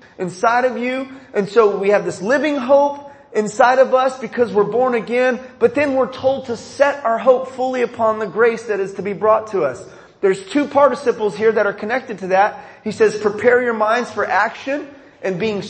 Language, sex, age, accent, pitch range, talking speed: English, male, 30-49, American, 200-245 Hz, 205 wpm